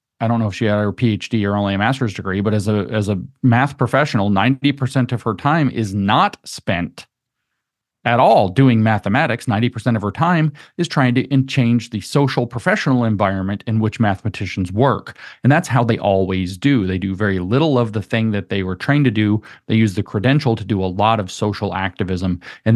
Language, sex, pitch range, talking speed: English, male, 105-125 Hz, 205 wpm